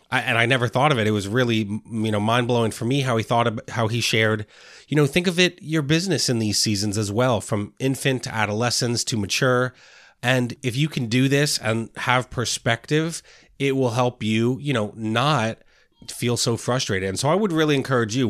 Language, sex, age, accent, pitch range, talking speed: English, male, 30-49, American, 105-130 Hz, 220 wpm